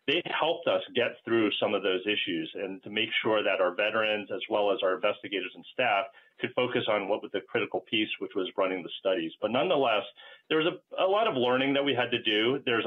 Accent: American